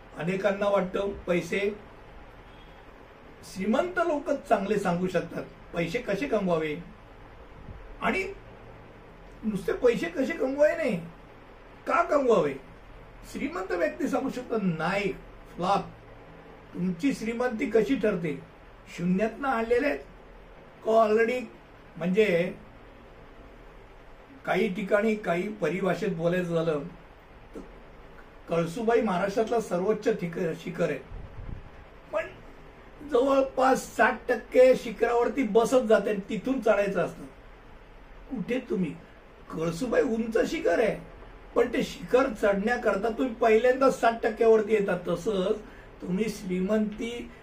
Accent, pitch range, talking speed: native, 190-245 Hz, 65 wpm